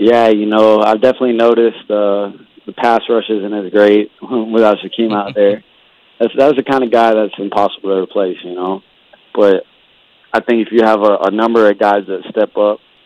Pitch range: 95-105 Hz